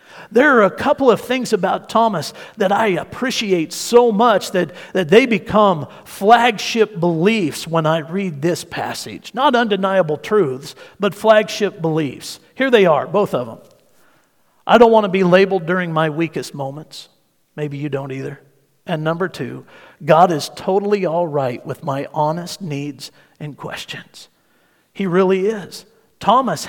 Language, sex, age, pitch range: English, male, 50-69, 155-215 Hz